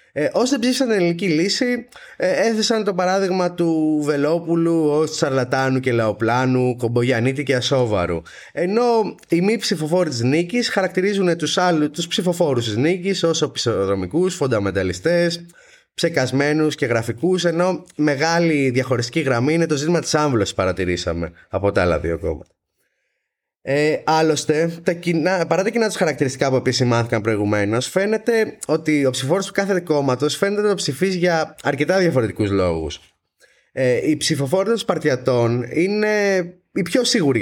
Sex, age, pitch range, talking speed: male, 20-39, 125-185 Hz, 140 wpm